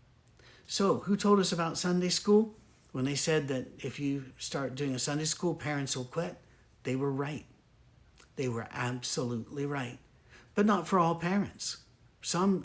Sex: male